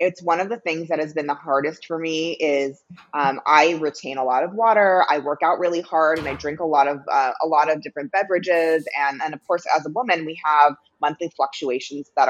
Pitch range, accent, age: 150-185 Hz, American, 20-39